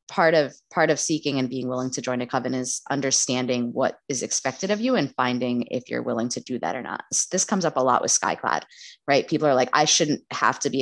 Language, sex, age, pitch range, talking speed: English, female, 20-39, 130-160 Hz, 250 wpm